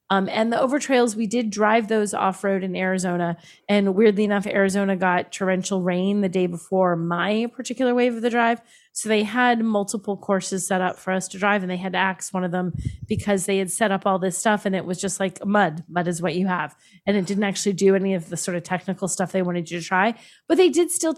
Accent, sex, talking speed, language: American, female, 245 wpm, English